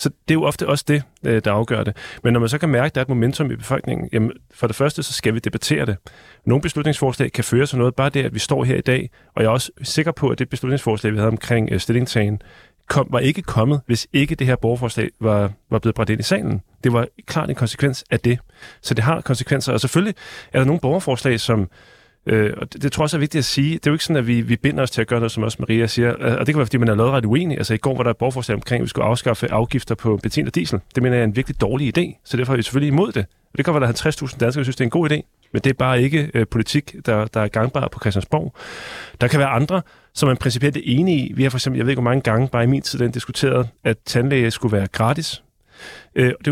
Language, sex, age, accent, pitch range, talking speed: Danish, male, 30-49, native, 115-140 Hz, 290 wpm